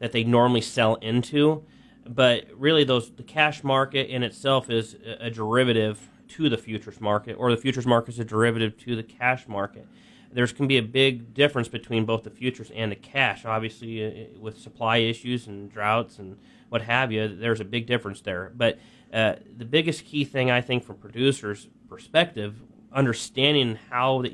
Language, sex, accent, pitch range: English, male, American, 115-135 Hz